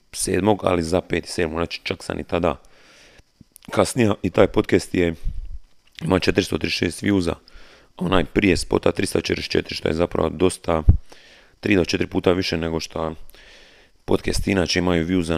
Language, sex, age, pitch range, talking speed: Croatian, male, 30-49, 80-90 Hz, 145 wpm